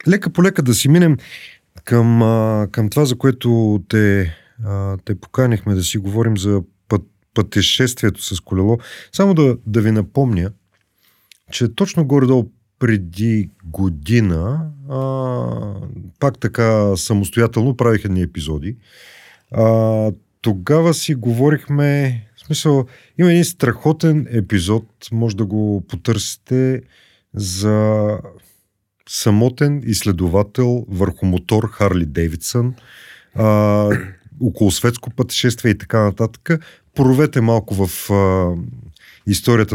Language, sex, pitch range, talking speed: Bulgarian, male, 100-125 Hz, 110 wpm